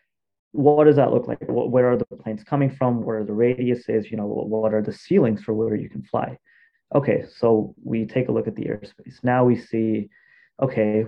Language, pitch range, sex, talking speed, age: English, 115-135 Hz, male, 210 wpm, 30-49